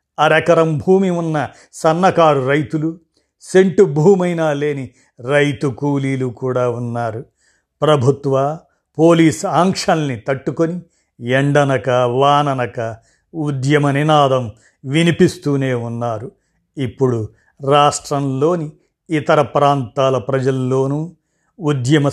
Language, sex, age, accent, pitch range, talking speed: Telugu, male, 50-69, native, 130-150 Hz, 75 wpm